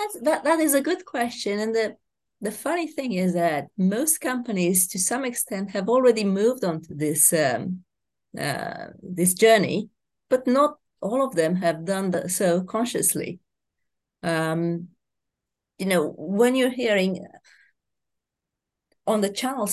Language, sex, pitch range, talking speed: English, female, 170-220 Hz, 135 wpm